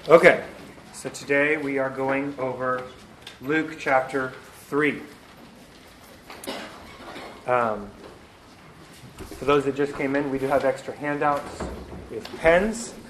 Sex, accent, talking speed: male, American, 110 wpm